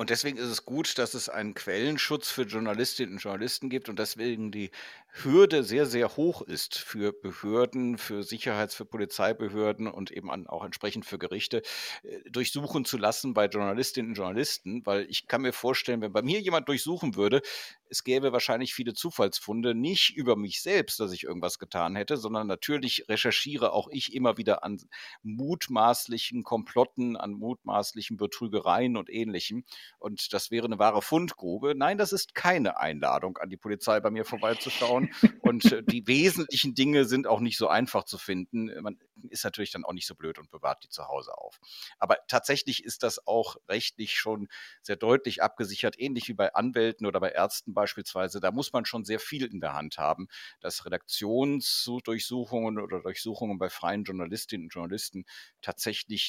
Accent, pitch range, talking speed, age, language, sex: German, 105-135 Hz, 170 wpm, 50-69, German, male